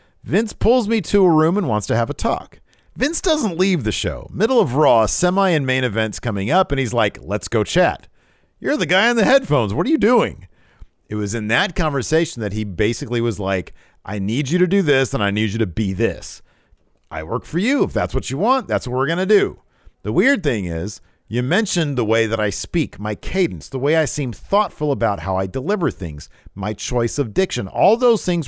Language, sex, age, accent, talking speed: English, male, 40-59, American, 230 wpm